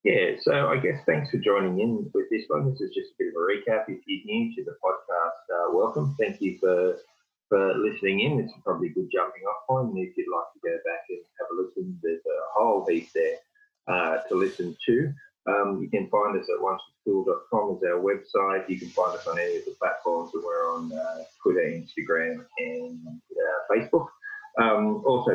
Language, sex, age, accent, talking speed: English, male, 30-49, Australian, 215 wpm